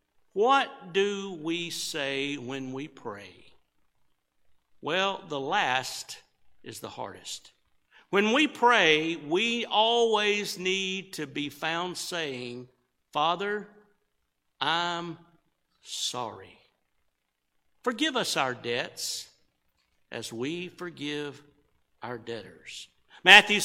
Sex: male